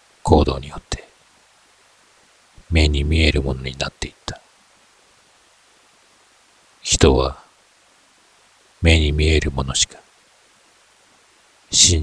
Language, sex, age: Japanese, male, 50-69